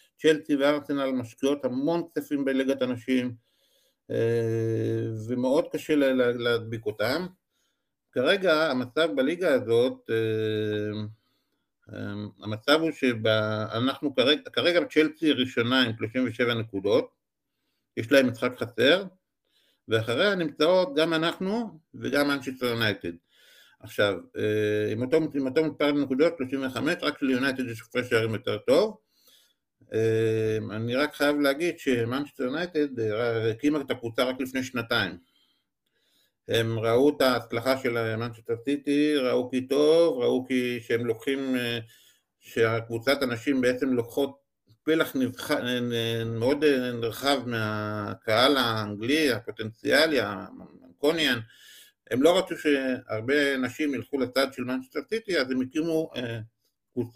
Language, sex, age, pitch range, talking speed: Hebrew, male, 50-69, 115-145 Hz, 115 wpm